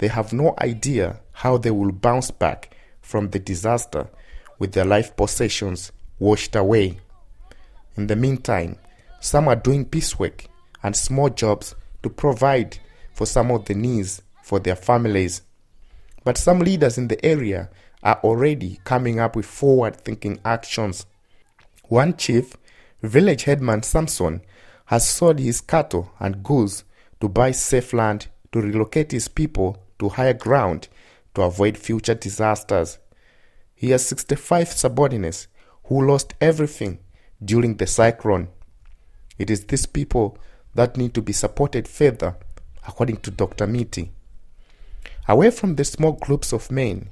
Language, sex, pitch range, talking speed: English, male, 100-130 Hz, 140 wpm